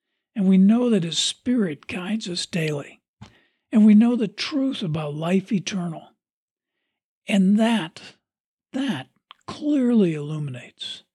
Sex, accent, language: male, American, English